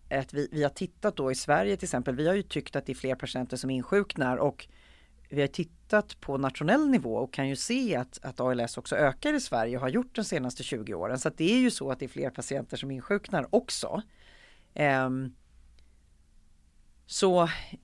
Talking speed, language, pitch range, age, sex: 210 wpm, Swedish, 130-190 Hz, 30-49, female